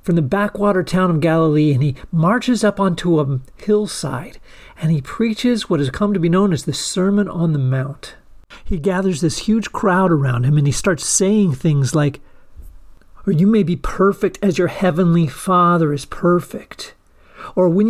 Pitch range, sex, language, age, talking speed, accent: 150-195 Hz, male, English, 40-59, 180 wpm, American